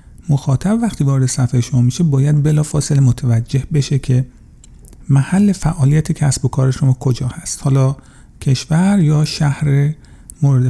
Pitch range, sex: 130-165 Hz, male